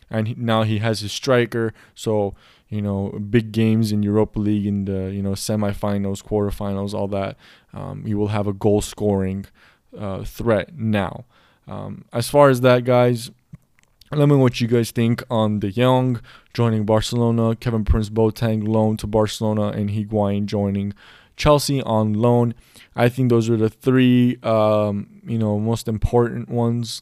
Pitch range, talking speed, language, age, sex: 105-120 Hz, 160 wpm, English, 20-39, male